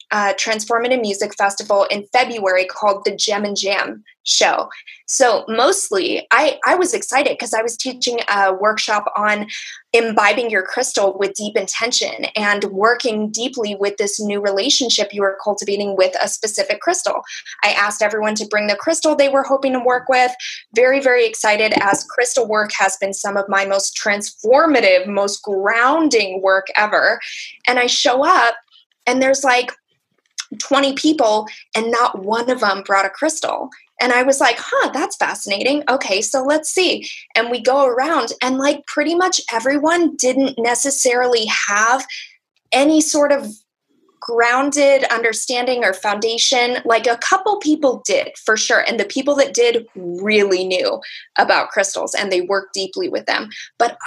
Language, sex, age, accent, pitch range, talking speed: English, female, 20-39, American, 205-270 Hz, 160 wpm